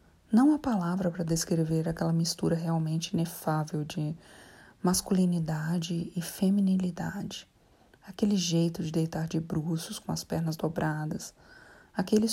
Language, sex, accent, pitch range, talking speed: Portuguese, female, Brazilian, 170-215 Hz, 115 wpm